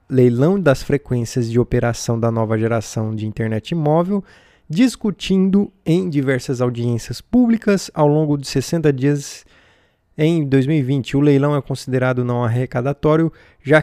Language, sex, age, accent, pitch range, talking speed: Portuguese, male, 20-39, Brazilian, 125-155 Hz, 130 wpm